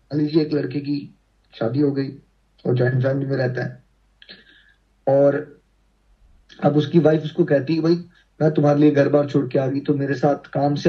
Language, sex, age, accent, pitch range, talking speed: Hindi, male, 30-49, native, 140-175 Hz, 125 wpm